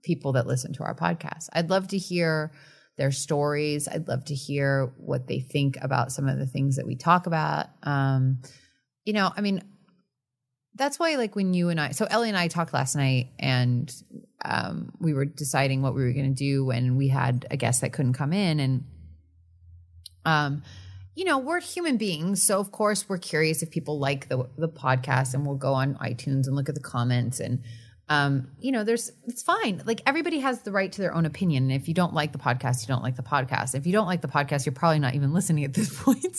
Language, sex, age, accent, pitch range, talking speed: English, female, 30-49, American, 135-190 Hz, 225 wpm